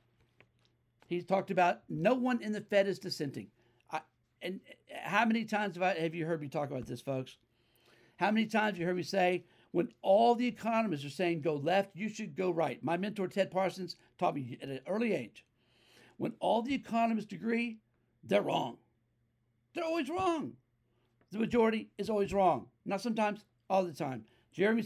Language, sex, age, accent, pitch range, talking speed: English, male, 60-79, American, 135-200 Hz, 180 wpm